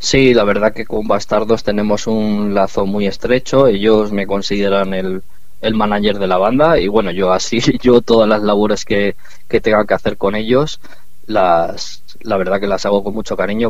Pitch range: 100-115 Hz